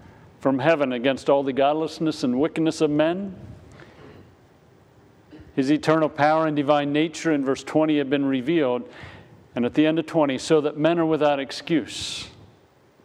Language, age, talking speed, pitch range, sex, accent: English, 50-69, 155 wpm, 125-155 Hz, male, American